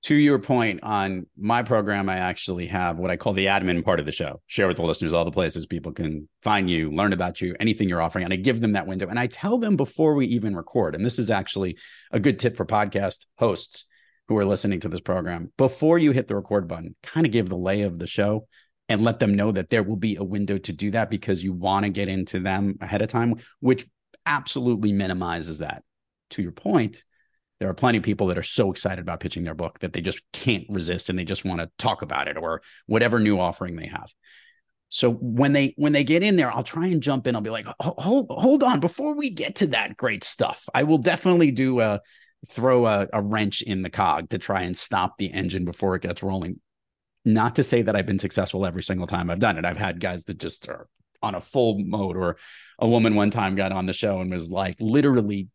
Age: 30-49